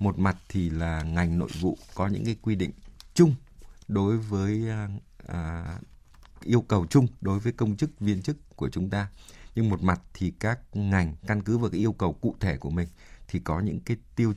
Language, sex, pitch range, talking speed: Vietnamese, male, 85-110 Hz, 205 wpm